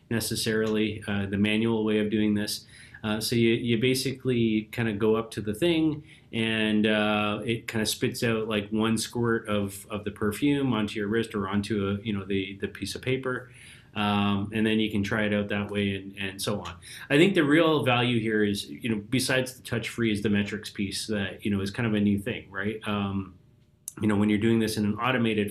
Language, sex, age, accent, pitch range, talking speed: English, male, 30-49, American, 105-125 Hz, 230 wpm